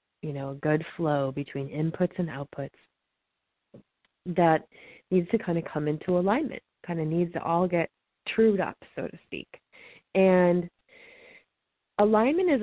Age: 30-49